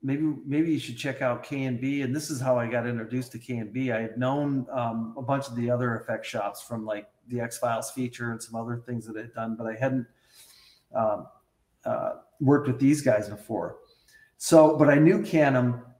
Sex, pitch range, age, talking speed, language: male, 115-140 Hz, 40-59, 210 wpm, English